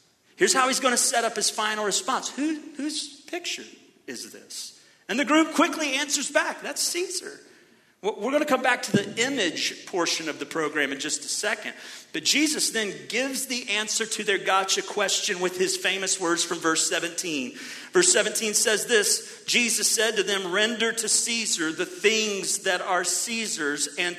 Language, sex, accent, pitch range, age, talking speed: English, male, American, 190-290 Hz, 40-59, 180 wpm